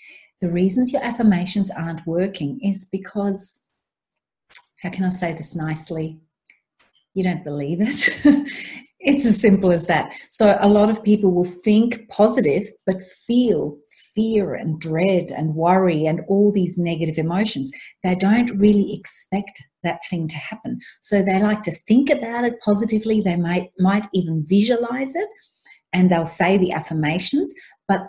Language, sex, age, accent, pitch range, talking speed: English, female, 40-59, Australian, 175-225 Hz, 150 wpm